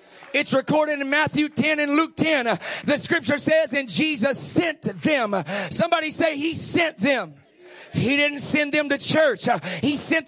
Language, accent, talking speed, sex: English, American, 165 wpm, male